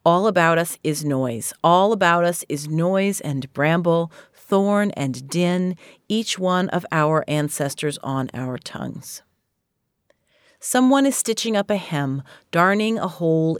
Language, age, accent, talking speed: English, 40-59, American, 140 wpm